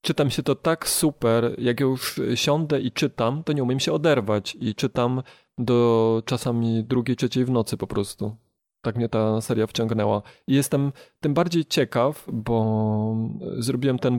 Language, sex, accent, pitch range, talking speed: Polish, male, native, 110-130 Hz, 160 wpm